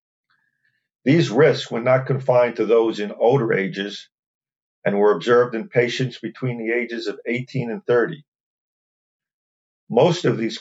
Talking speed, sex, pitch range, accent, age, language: 140 wpm, male, 105-130 Hz, American, 50-69, English